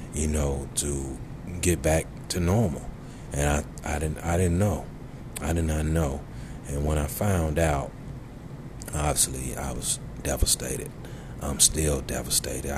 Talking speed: 140 wpm